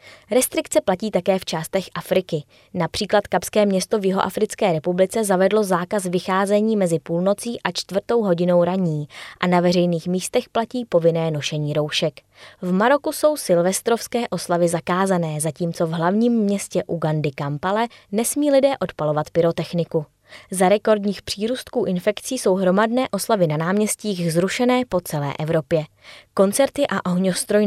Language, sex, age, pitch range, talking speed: Czech, female, 20-39, 170-210 Hz, 130 wpm